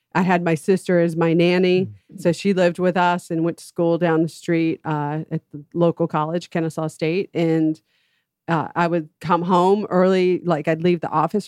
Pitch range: 160-185 Hz